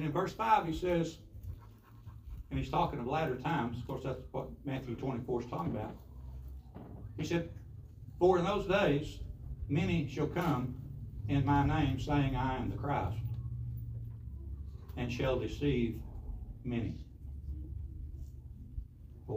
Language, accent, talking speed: English, American, 135 wpm